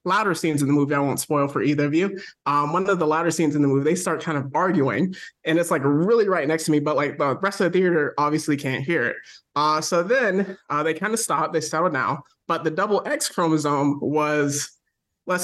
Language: English